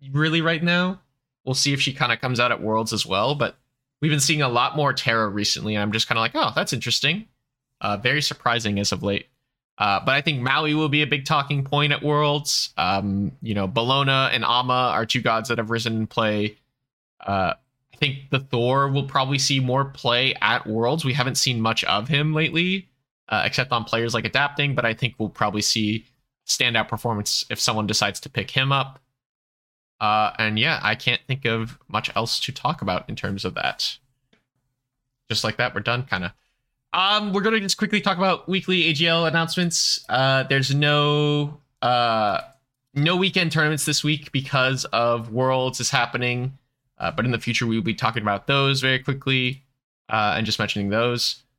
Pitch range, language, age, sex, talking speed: 115-145 Hz, English, 20-39, male, 200 wpm